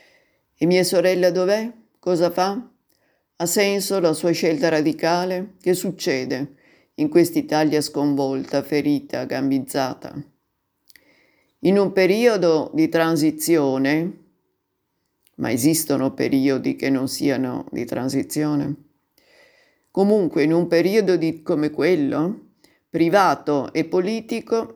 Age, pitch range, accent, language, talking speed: 50-69, 145-185 Hz, native, Italian, 100 wpm